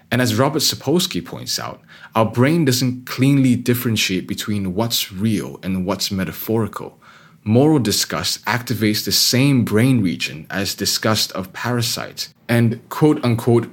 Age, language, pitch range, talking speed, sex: 20-39, English, 100-125 Hz, 130 wpm, male